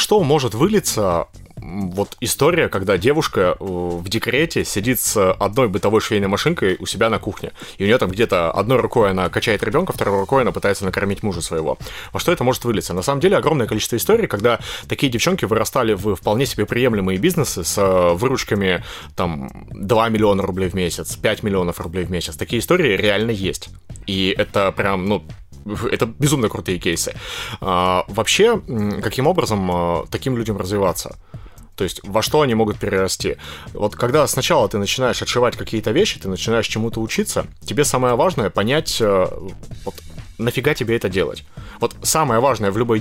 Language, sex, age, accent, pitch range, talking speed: Russian, male, 30-49, native, 95-130 Hz, 165 wpm